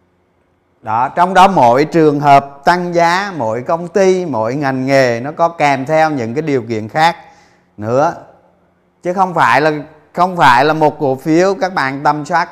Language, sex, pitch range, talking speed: Vietnamese, male, 95-160 Hz, 180 wpm